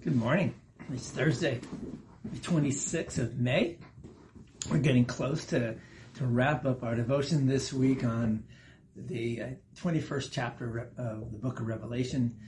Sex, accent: male, American